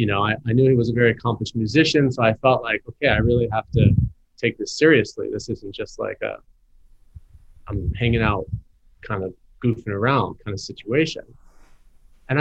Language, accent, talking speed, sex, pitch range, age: English, American, 190 wpm, male, 105-130 Hz, 30-49